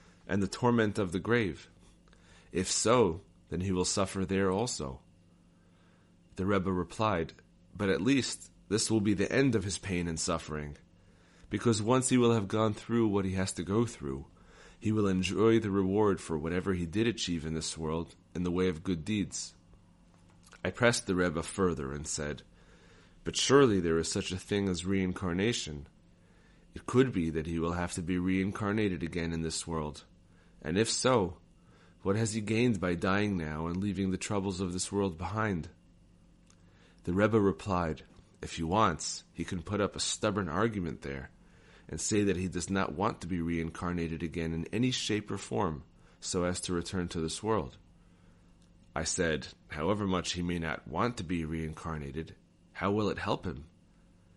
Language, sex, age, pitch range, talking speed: English, male, 30-49, 85-100 Hz, 180 wpm